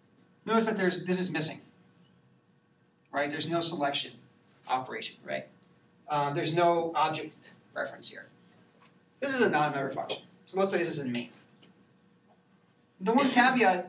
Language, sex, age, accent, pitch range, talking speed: English, male, 40-59, American, 150-195 Hz, 145 wpm